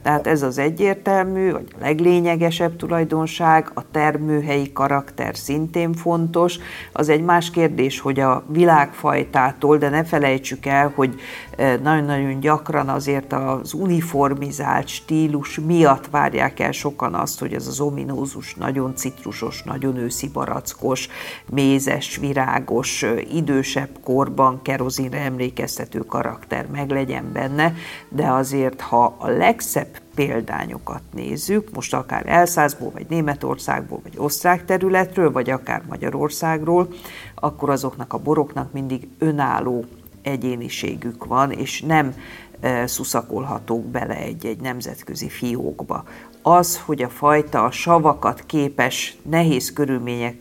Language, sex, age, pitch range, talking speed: Hungarian, female, 50-69, 130-160 Hz, 115 wpm